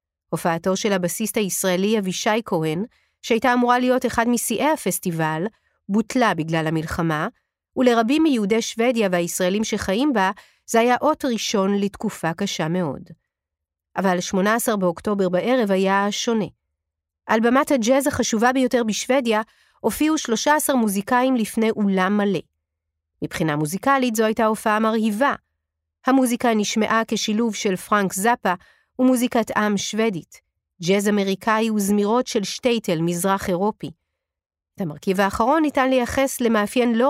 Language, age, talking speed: Hebrew, 40-59, 120 wpm